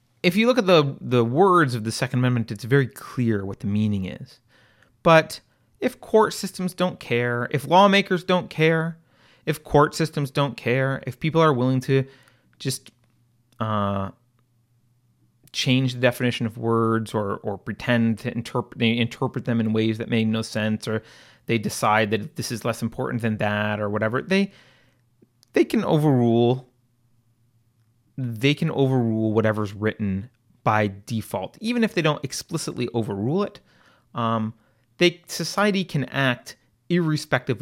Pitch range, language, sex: 115-155 Hz, English, male